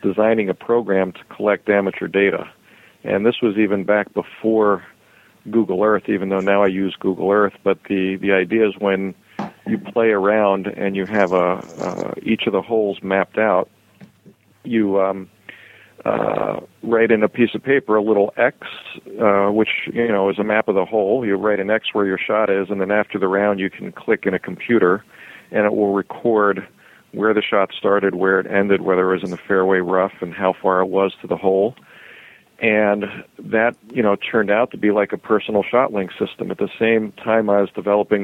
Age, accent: 50-69, American